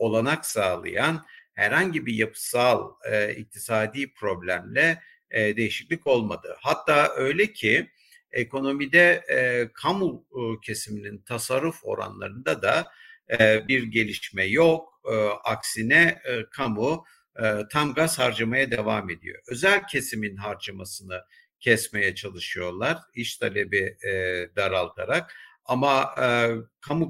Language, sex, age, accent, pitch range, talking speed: Turkish, male, 60-79, native, 110-165 Hz, 105 wpm